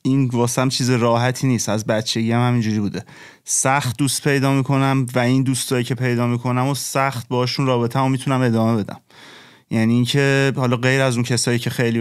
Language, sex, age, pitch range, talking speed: Persian, male, 30-49, 125-150 Hz, 180 wpm